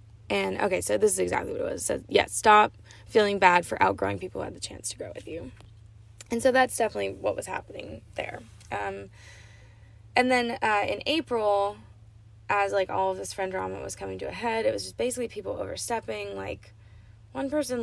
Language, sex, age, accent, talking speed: English, female, 10-29, American, 210 wpm